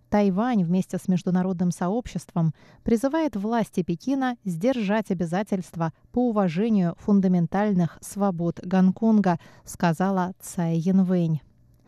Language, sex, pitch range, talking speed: Russian, female, 180-230 Hz, 90 wpm